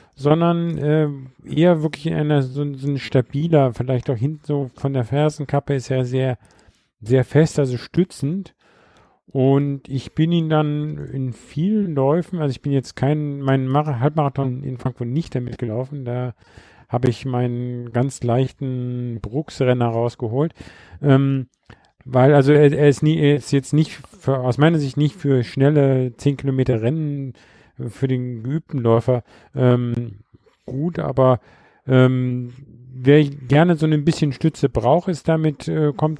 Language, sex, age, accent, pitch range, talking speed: German, male, 50-69, German, 125-150 Hz, 155 wpm